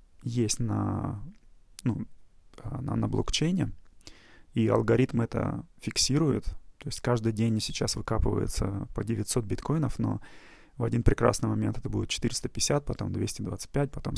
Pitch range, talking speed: 110-130 Hz, 125 wpm